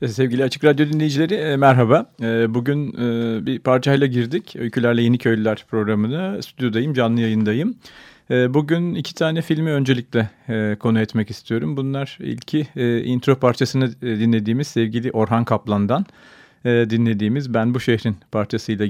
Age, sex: 40-59, male